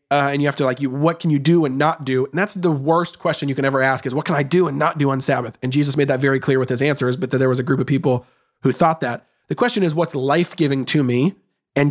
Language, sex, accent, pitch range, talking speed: English, male, American, 135-165 Hz, 310 wpm